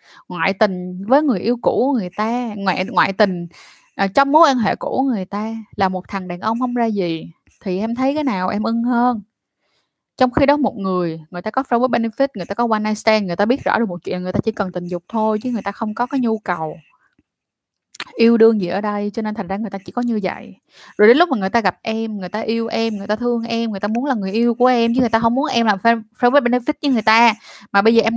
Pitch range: 195-245 Hz